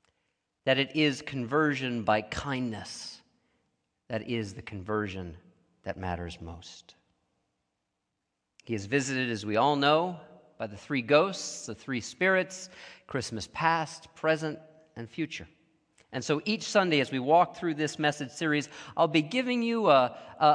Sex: male